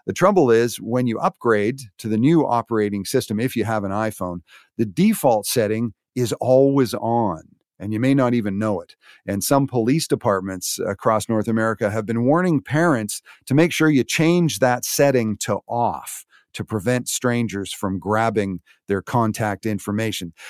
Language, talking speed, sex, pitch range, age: English, 165 wpm, male, 105-130 Hz, 50-69